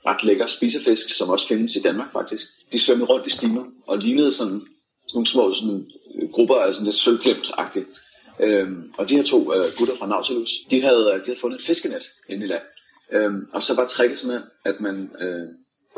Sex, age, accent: male, 30-49, native